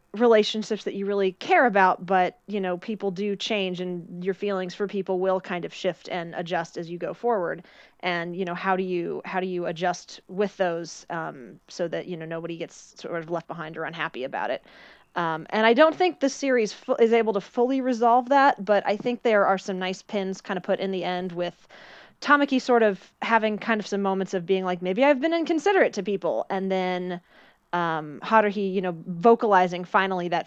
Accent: American